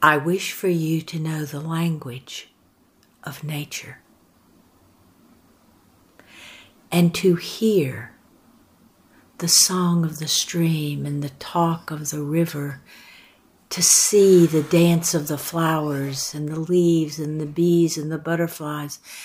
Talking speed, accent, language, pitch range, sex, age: 125 wpm, American, English, 150-180 Hz, female, 60-79